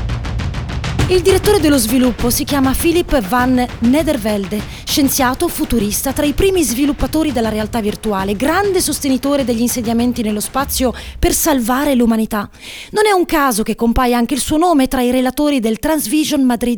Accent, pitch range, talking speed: native, 230-305 Hz, 155 wpm